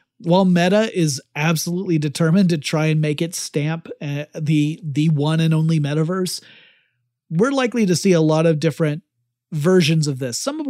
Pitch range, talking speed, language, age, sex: 145-170 Hz, 175 wpm, English, 30-49, male